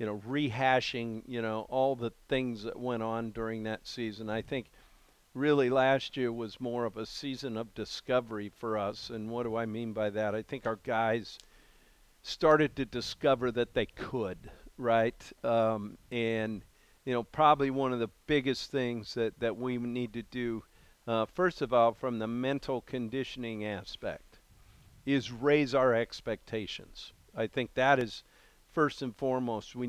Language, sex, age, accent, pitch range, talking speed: English, male, 50-69, American, 110-130 Hz, 165 wpm